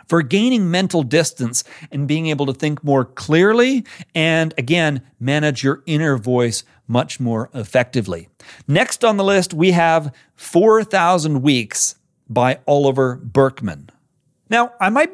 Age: 40-59